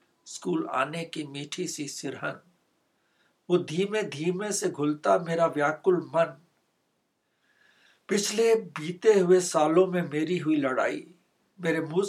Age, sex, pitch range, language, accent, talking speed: 60-79, male, 150-185 Hz, Hindi, native, 120 wpm